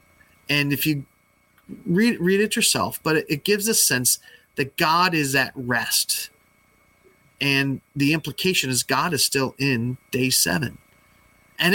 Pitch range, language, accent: 125-160 Hz, English, American